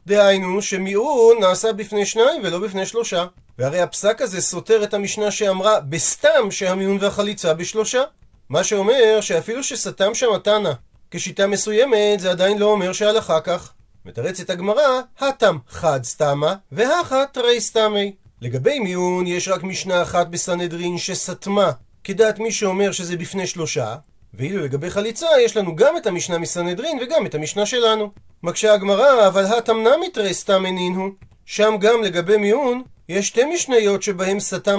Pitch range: 170-220 Hz